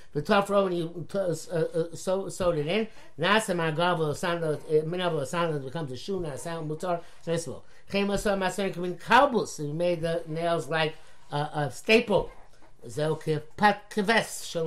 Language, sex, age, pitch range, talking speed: English, male, 60-79, 155-195 Hz, 80 wpm